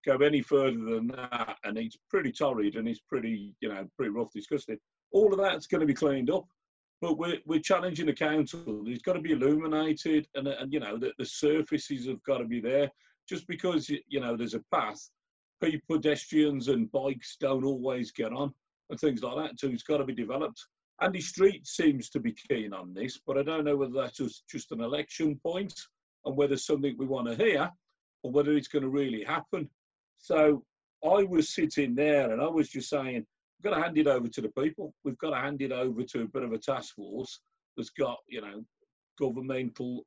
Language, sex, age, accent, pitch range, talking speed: English, male, 40-59, British, 125-155 Hz, 215 wpm